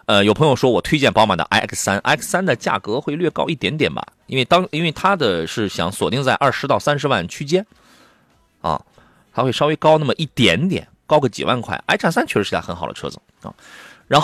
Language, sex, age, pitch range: Chinese, male, 30-49, 100-145 Hz